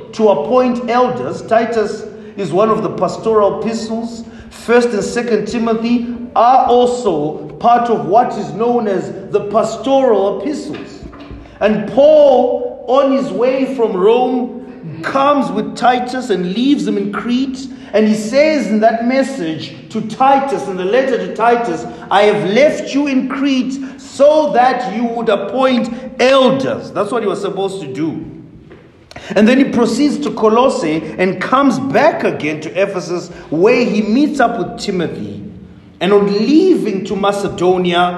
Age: 40-59